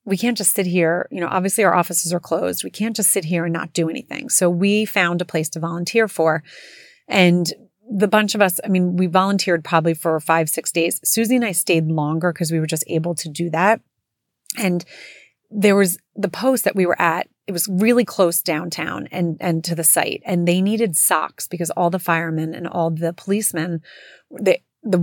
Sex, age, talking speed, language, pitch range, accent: female, 30-49, 215 wpm, English, 165-190 Hz, American